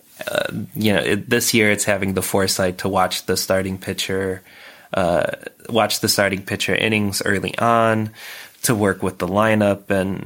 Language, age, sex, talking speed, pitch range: English, 20-39, male, 170 wpm, 95-110 Hz